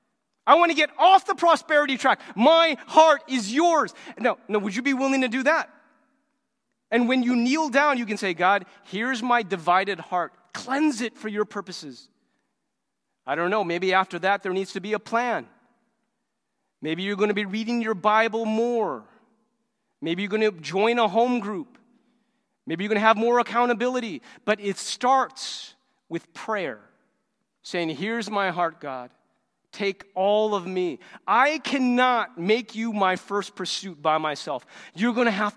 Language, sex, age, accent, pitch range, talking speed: English, male, 30-49, American, 170-240 Hz, 170 wpm